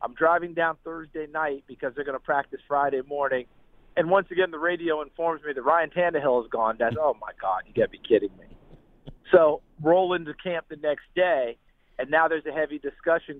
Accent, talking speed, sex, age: American, 210 wpm, male, 40-59